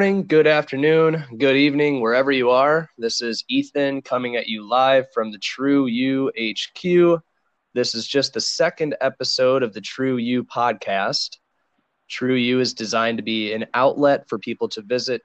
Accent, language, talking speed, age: American, English, 175 wpm, 20-39